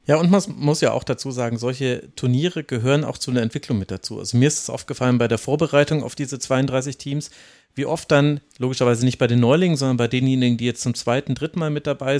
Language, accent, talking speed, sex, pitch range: German, German, 235 wpm, male, 120-150 Hz